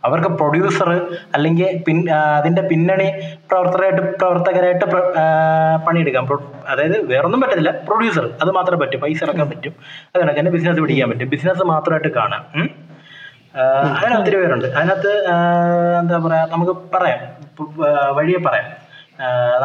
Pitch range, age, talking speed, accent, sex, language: 145-180 Hz, 20-39, 105 wpm, native, male, Malayalam